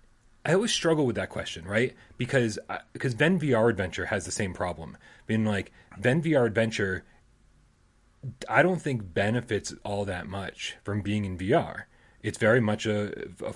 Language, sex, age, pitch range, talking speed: English, male, 30-49, 105-130 Hz, 165 wpm